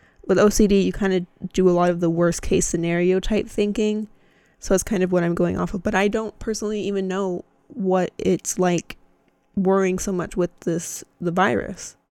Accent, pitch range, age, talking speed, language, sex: American, 185-205 Hz, 20-39, 200 wpm, English, female